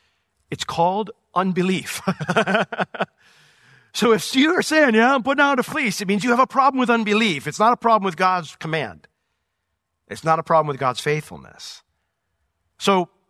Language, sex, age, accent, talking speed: English, male, 50-69, American, 165 wpm